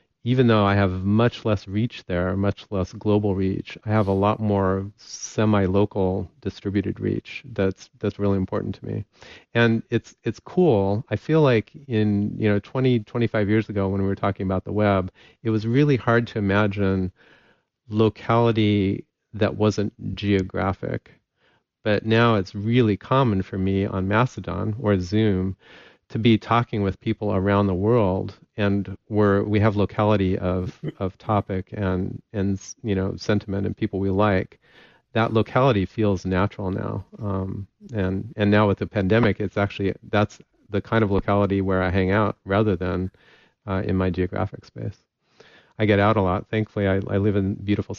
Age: 40-59